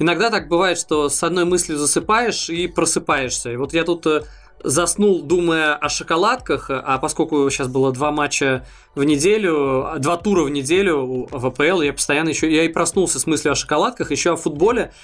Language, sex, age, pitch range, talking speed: Russian, male, 20-39, 140-170 Hz, 180 wpm